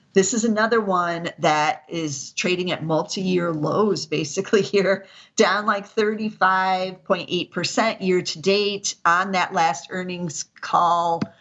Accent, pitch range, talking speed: American, 175-215 Hz, 145 wpm